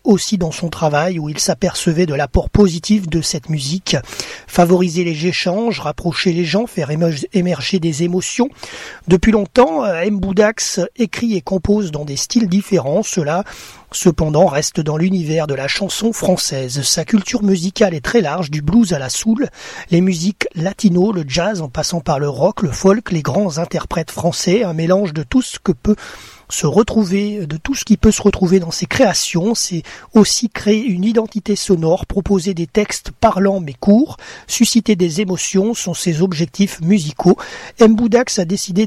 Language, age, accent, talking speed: French, 30-49, French, 170 wpm